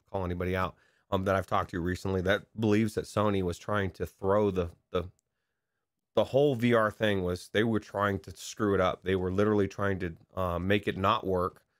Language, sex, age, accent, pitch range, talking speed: English, male, 30-49, American, 90-110 Hz, 210 wpm